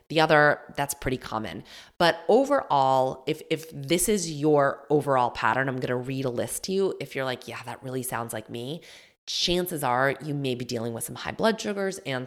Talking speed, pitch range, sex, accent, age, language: 210 wpm, 125-160 Hz, female, American, 20-39, English